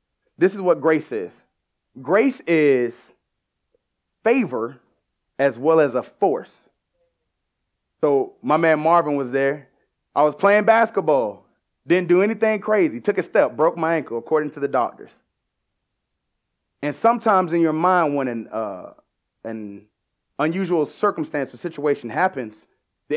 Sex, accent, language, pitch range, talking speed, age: male, American, English, 135-195 Hz, 130 wpm, 20-39